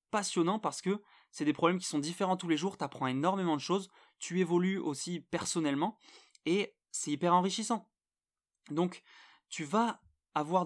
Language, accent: French, French